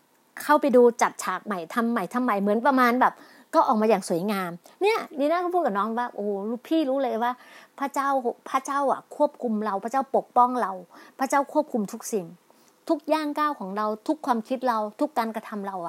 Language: Thai